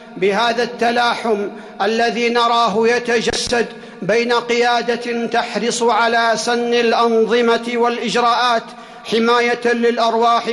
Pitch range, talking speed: 230-245 Hz, 80 wpm